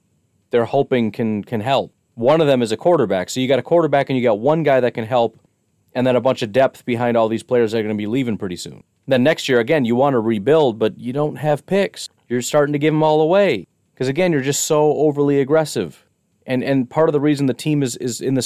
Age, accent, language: 30-49, American, English